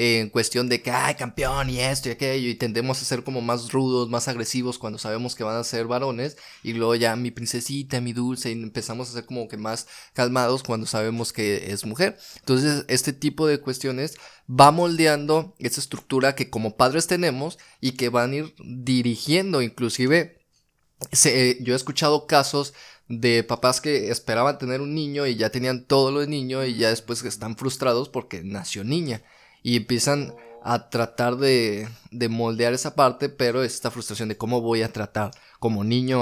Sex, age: male, 20-39